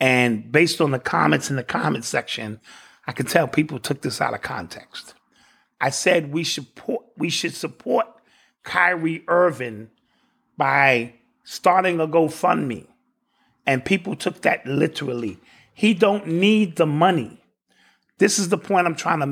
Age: 30-49